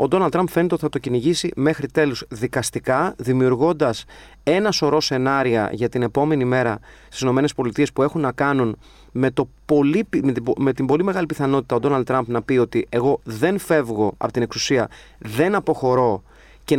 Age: 30-49